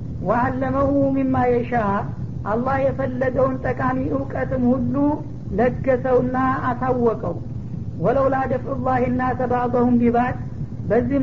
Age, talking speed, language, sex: 60-79, 90 wpm, Amharic, female